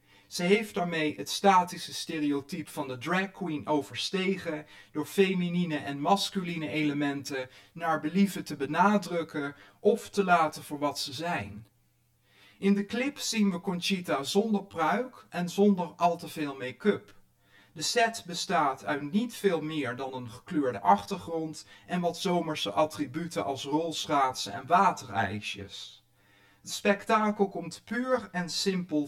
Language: Dutch